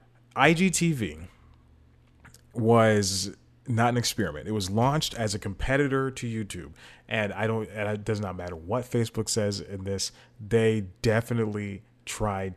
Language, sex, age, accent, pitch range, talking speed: English, male, 30-49, American, 100-120 Hz, 140 wpm